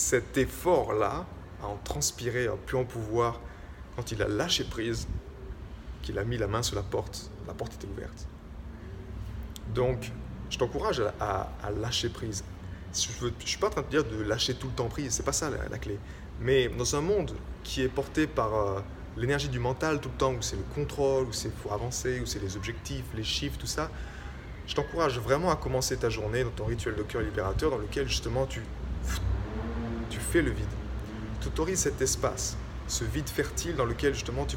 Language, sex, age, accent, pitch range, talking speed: French, male, 20-39, French, 80-125 Hz, 205 wpm